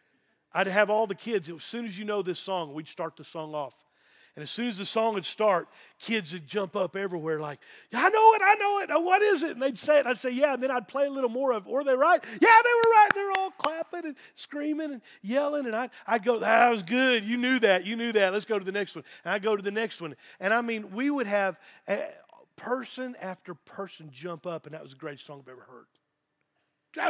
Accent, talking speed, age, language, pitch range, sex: American, 260 wpm, 40-59, English, 185-285 Hz, male